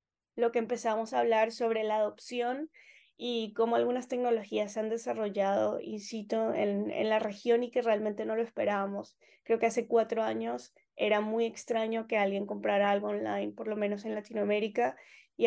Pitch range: 205-235 Hz